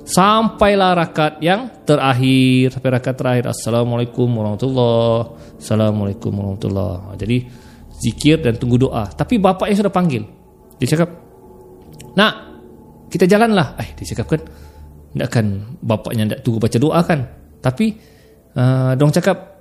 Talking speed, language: 125 wpm, Malay